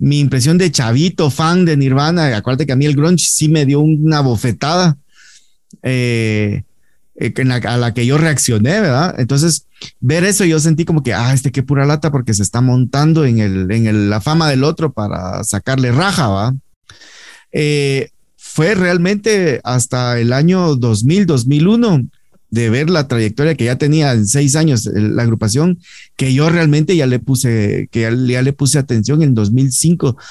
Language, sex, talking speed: Spanish, male, 175 wpm